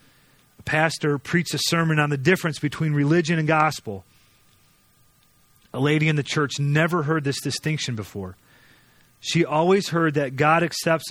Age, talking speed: 40-59, 150 wpm